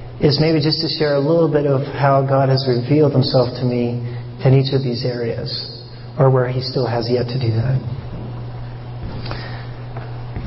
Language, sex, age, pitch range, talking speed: English, male, 40-59, 120-140 Hz, 180 wpm